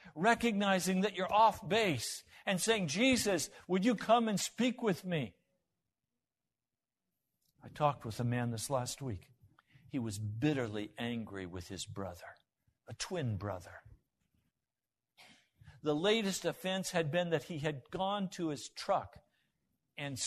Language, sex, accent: English, male, American